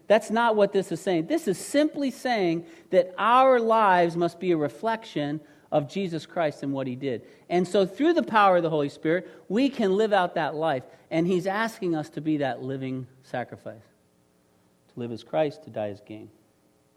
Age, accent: 40-59, American